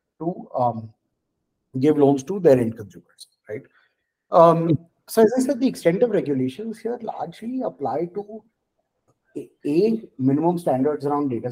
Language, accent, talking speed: English, Indian, 140 wpm